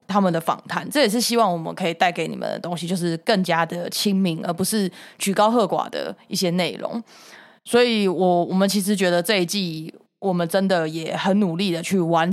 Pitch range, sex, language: 170-215 Hz, female, Chinese